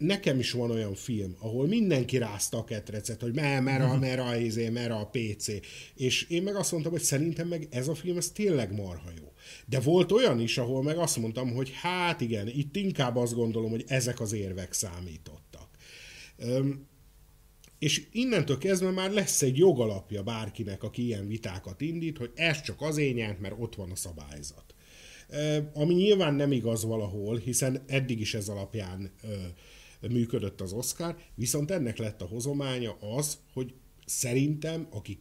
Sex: male